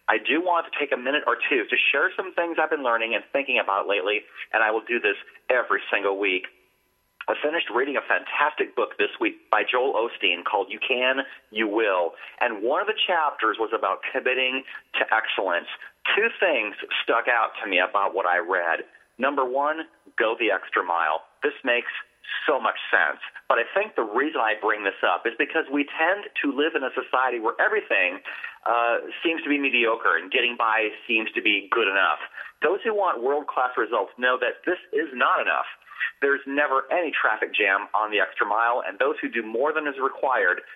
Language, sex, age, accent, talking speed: English, male, 40-59, American, 200 wpm